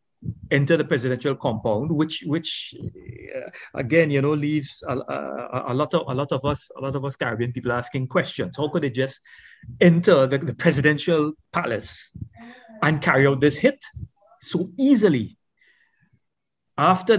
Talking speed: 155 wpm